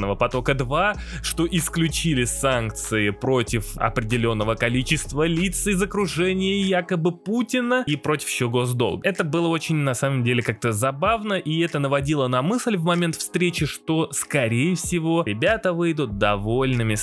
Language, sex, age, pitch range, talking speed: Russian, male, 20-39, 115-165 Hz, 135 wpm